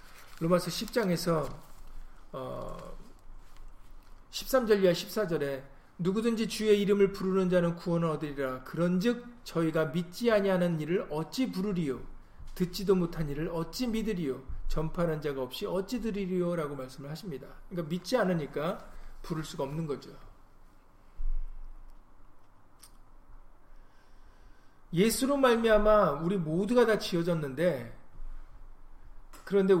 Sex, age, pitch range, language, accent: male, 40-59, 140-190 Hz, Korean, native